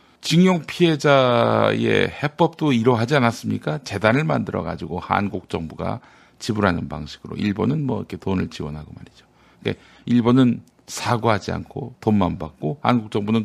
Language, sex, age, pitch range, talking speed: English, male, 50-69, 95-135 Hz, 110 wpm